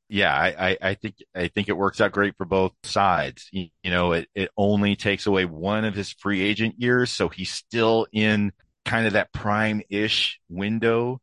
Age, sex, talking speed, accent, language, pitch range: 40-59, male, 200 wpm, American, English, 90-105 Hz